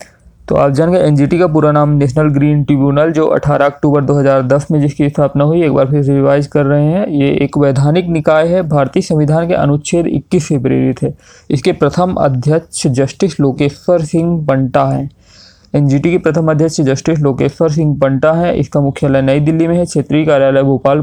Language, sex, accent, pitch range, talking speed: Hindi, male, native, 140-160 Hz, 180 wpm